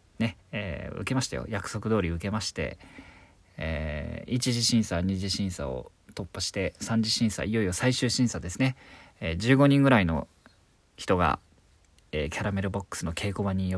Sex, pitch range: male, 90-125 Hz